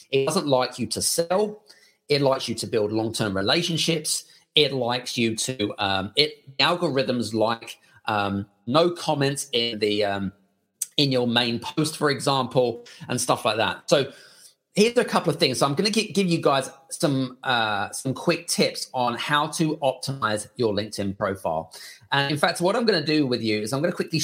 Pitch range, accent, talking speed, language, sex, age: 110-150 Hz, British, 190 wpm, English, male, 30-49